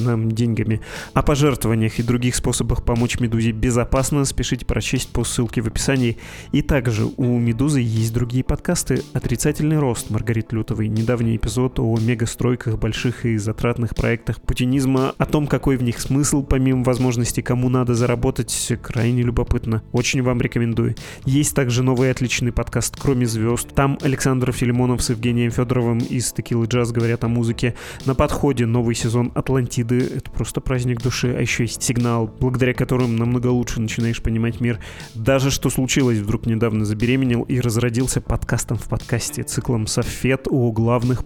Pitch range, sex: 115-130 Hz, male